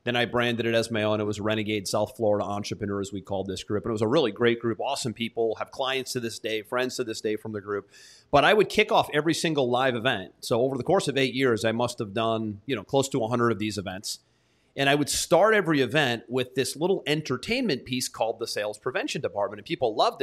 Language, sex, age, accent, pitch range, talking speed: English, male, 30-49, American, 115-155 Hz, 260 wpm